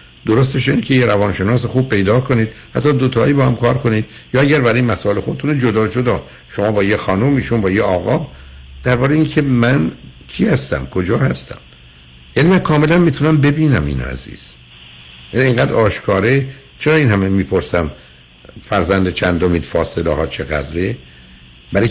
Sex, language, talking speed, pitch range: male, Persian, 150 wpm, 80-130 Hz